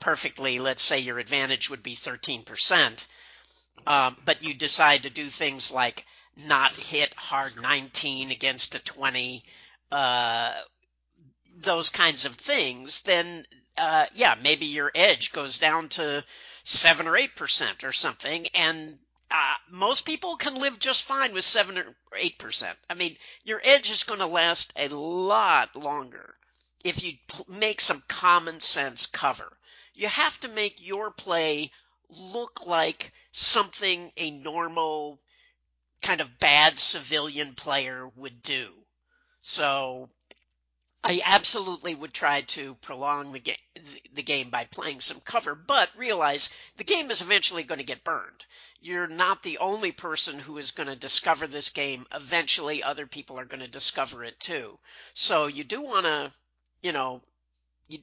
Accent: American